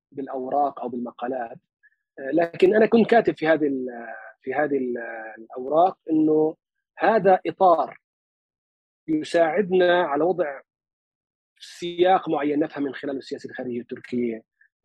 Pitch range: 140-205 Hz